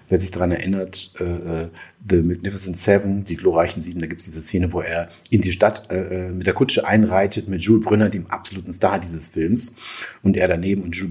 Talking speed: 210 wpm